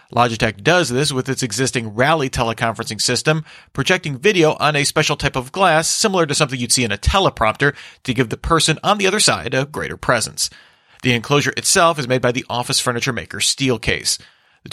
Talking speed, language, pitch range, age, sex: 195 wpm, English, 120-150 Hz, 40-59, male